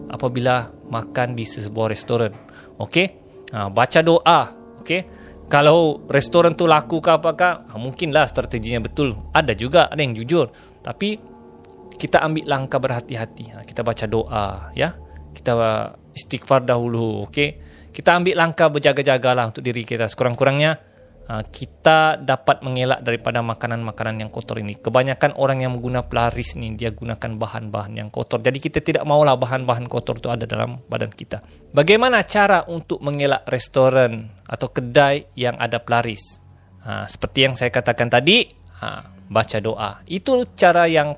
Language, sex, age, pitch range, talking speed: Malay, male, 20-39, 110-150 Hz, 145 wpm